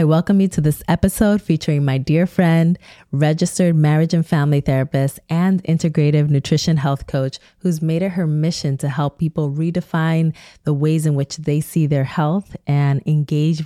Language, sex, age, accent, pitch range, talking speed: English, female, 20-39, American, 135-160 Hz, 170 wpm